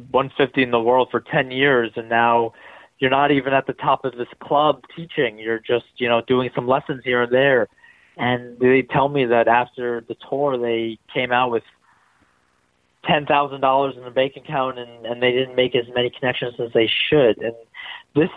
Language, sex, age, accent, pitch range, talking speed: English, male, 30-49, American, 120-155 Hz, 200 wpm